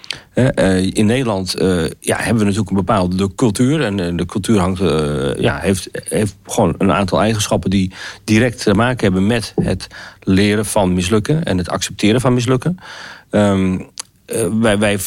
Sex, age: male, 40-59